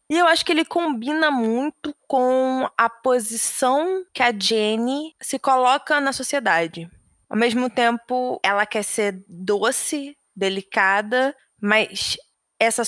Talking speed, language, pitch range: 125 wpm, Portuguese, 220-275 Hz